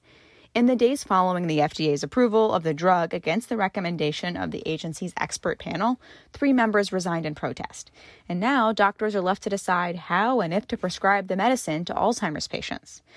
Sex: female